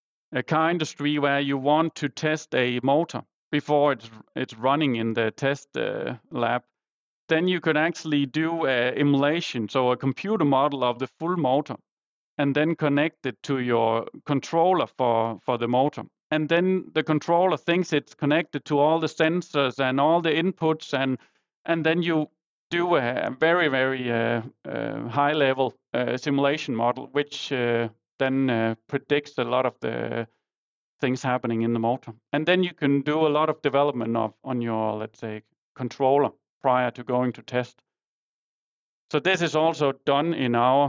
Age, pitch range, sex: 40-59, 125-155 Hz, male